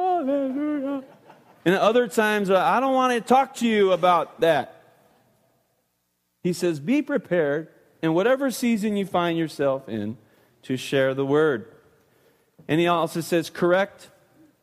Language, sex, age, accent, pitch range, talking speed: English, male, 40-59, American, 145-205 Hz, 130 wpm